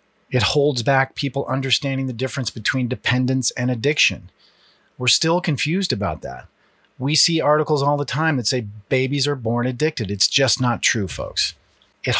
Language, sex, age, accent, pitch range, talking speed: English, male, 40-59, American, 115-140 Hz, 165 wpm